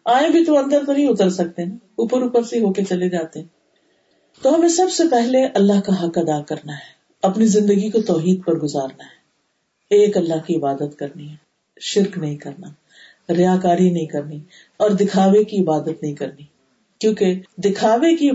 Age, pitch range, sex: 50-69, 170-255 Hz, female